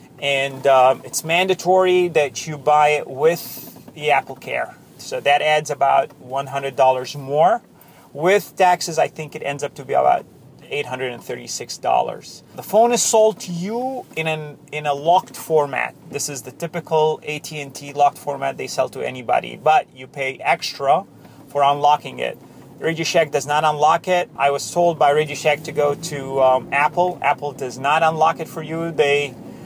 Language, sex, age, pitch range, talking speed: English, male, 30-49, 140-170 Hz, 170 wpm